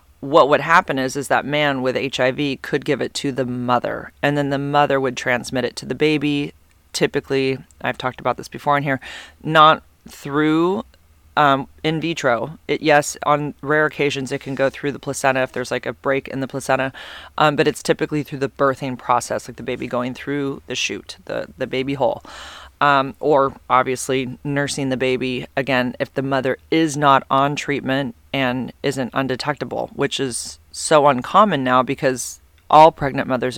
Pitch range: 130-145 Hz